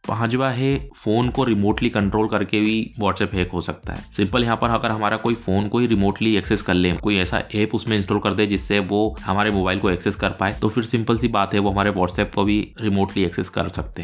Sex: male